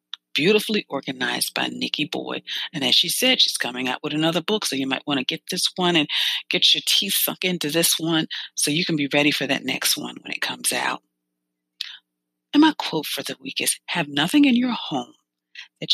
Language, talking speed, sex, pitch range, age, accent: English, 215 wpm, female, 130-200 Hz, 40-59, American